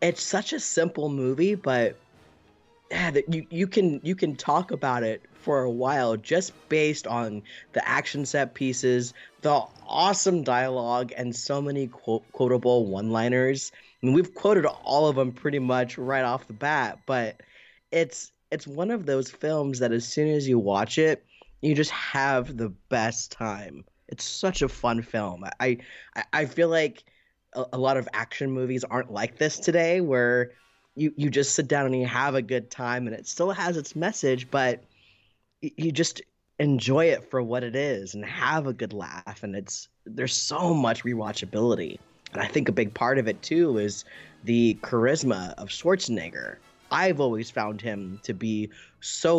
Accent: American